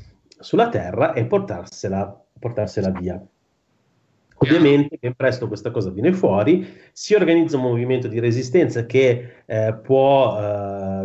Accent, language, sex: native, Italian, male